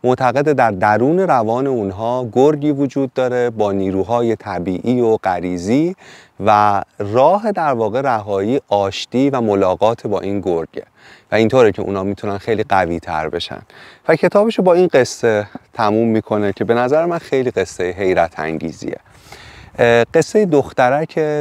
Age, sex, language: 30-49, male, Persian